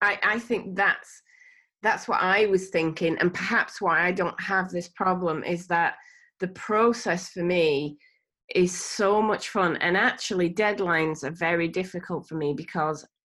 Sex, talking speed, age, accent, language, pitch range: female, 165 wpm, 30-49, British, English, 170-205 Hz